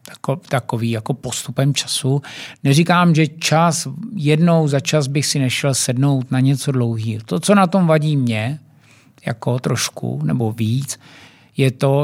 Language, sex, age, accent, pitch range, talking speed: Czech, male, 50-69, native, 125-150 Hz, 145 wpm